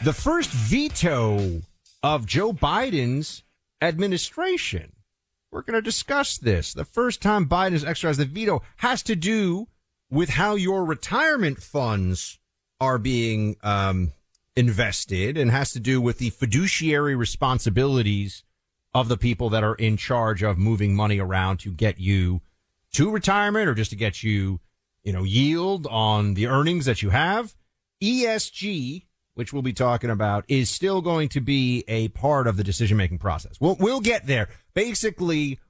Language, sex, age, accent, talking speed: English, male, 40-59, American, 155 wpm